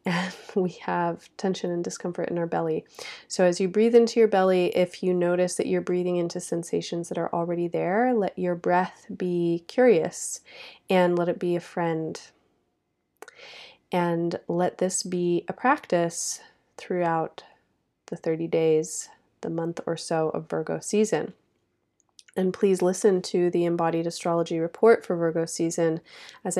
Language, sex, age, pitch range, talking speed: English, female, 30-49, 165-185 Hz, 150 wpm